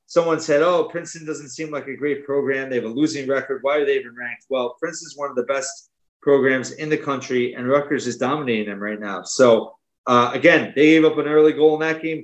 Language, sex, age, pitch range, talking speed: English, male, 30-49, 130-155 Hz, 240 wpm